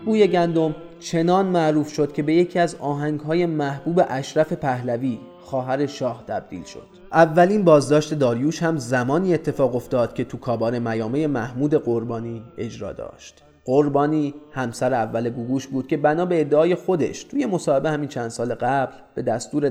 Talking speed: 150 wpm